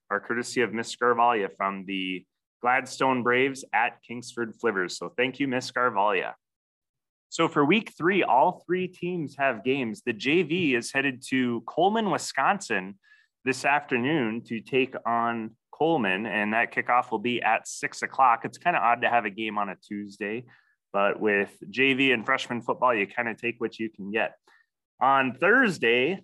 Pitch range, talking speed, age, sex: 115-145 Hz, 170 wpm, 20-39, male